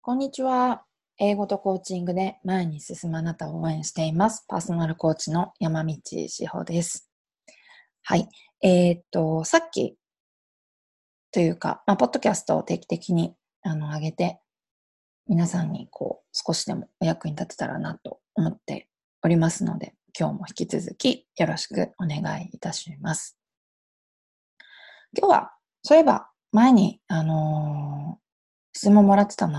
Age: 20-39